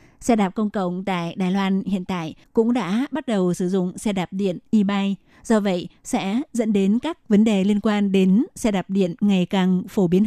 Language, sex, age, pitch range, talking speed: Vietnamese, female, 20-39, 185-220 Hz, 215 wpm